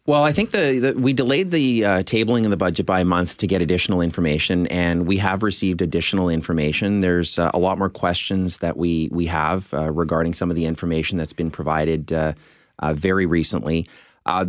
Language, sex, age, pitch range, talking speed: English, male, 30-49, 80-95 Hz, 205 wpm